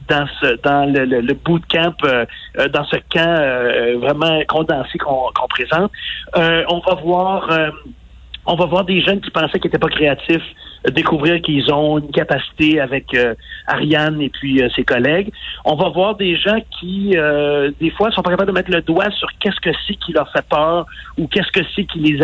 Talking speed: 210 wpm